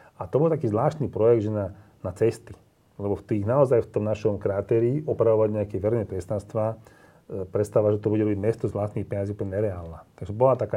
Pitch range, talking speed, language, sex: 95-115 Hz, 205 wpm, Slovak, male